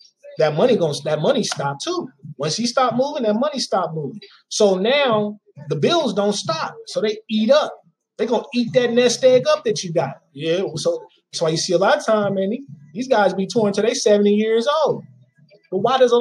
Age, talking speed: 20-39, 225 wpm